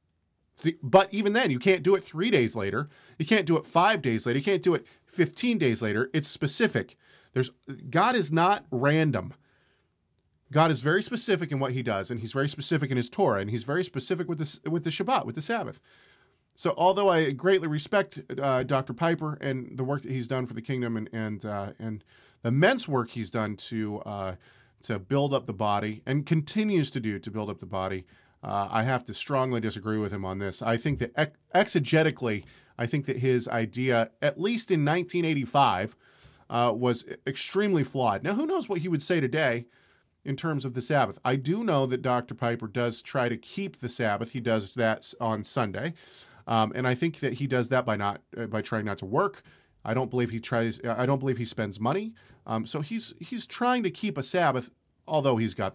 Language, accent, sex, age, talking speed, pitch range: English, American, male, 40-59, 215 wpm, 115-160 Hz